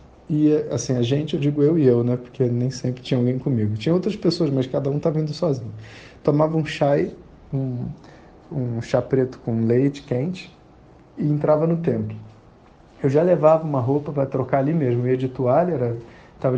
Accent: Brazilian